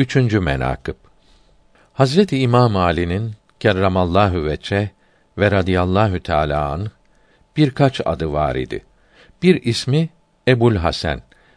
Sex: male